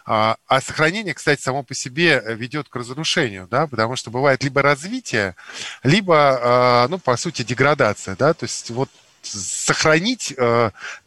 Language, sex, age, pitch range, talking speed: Russian, male, 20-39, 115-145 Hz, 135 wpm